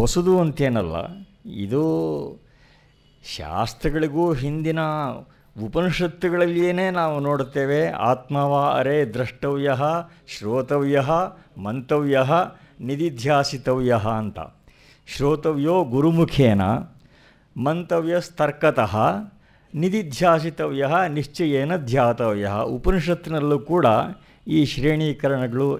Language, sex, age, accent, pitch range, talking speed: Kannada, male, 50-69, native, 125-170 Hz, 65 wpm